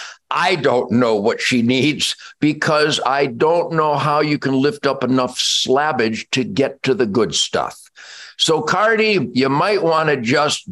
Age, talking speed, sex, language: 50-69, 170 wpm, male, English